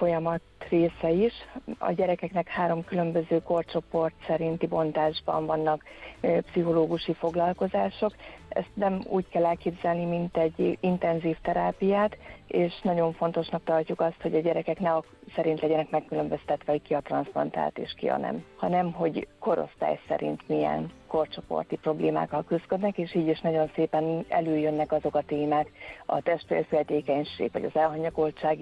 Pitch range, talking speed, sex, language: 150-170 Hz, 135 wpm, female, Hungarian